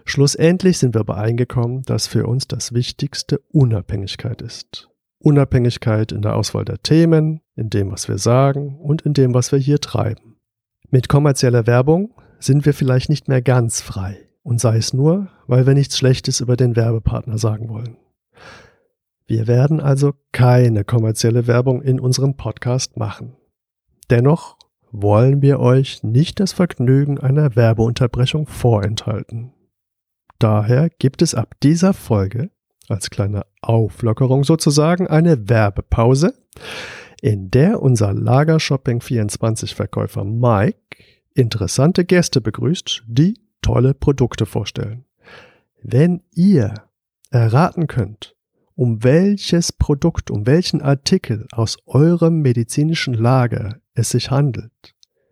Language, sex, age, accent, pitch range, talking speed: German, male, 50-69, German, 115-145 Hz, 125 wpm